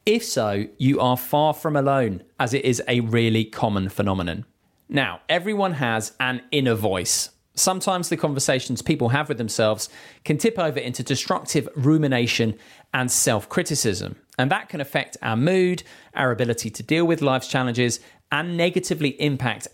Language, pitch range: English, 115-155 Hz